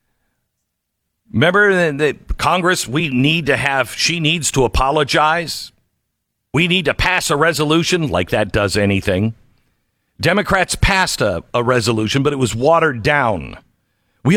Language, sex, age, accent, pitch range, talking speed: English, male, 50-69, American, 110-150 Hz, 135 wpm